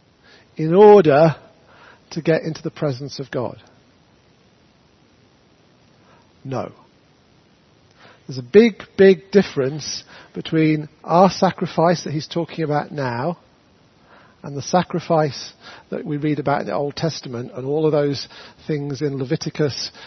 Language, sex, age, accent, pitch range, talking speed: English, male, 40-59, British, 130-165 Hz, 125 wpm